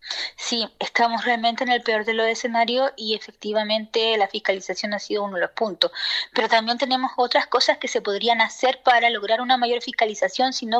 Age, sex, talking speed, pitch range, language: 20-39, female, 195 wpm, 220-270 Hz, Spanish